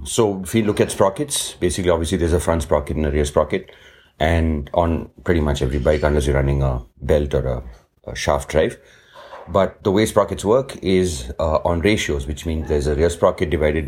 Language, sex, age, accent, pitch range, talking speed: English, male, 30-49, Indian, 75-95 Hz, 210 wpm